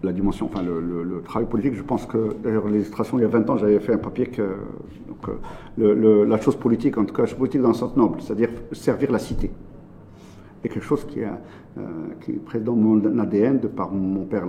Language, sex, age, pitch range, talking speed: French, male, 50-69, 105-120 Hz, 235 wpm